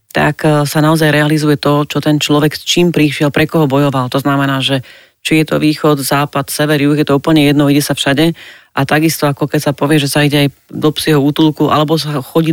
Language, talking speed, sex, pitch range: Slovak, 225 wpm, female, 145-160 Hz